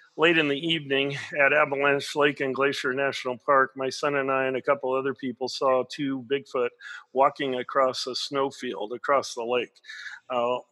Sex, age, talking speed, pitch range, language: male, 50-69, 175 wpm, 135-160 Hz, English